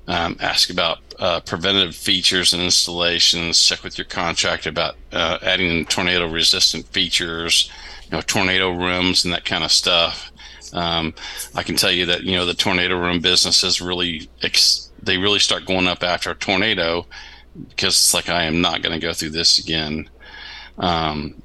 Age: 40-59